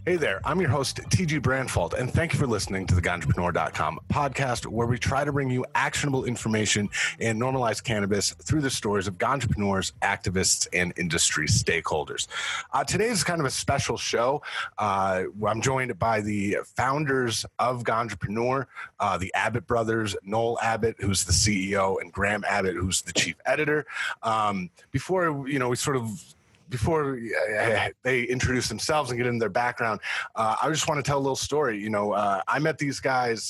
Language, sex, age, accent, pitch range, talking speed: English, male, 30-49, American, 105-135 Hz, 175 wpm